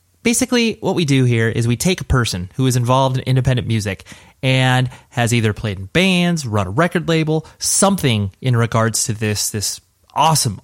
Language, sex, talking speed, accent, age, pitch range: English, male, 185 wpm, American, 30-49, 115-150 Hz